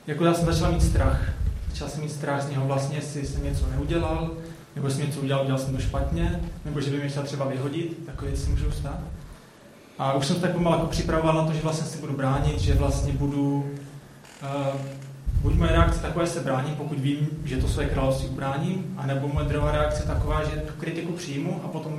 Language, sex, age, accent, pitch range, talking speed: Czech, male, 20-39, native, 130-155 Hz, 210 wpm